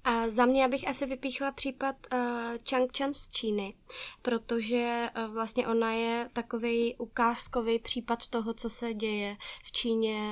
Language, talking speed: Czech, 145 wpm